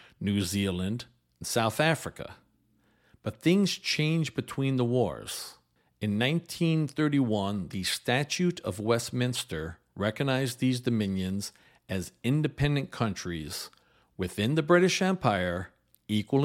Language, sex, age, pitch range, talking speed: English, male, 50-69, 100-135 Hz, 100 wpm